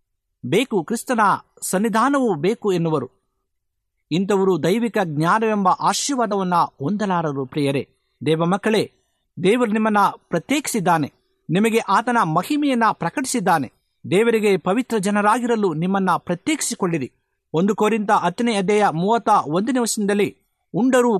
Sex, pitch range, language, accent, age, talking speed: male, 165-230 Hz, Kannada, native, 50-69, 90 wpm